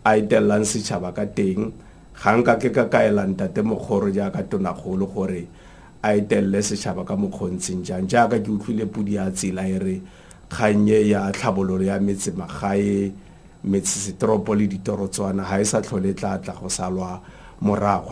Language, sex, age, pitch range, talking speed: English, male, 50-69, 100-125 Hz, 150 wpm